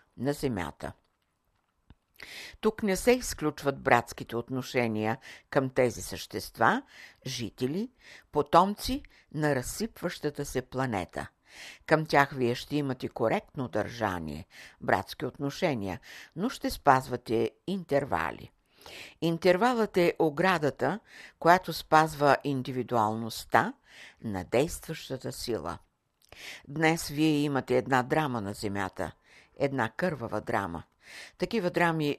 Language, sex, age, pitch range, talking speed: Bulgarian, female, 60-79, 115-160 Hz, 100 wpm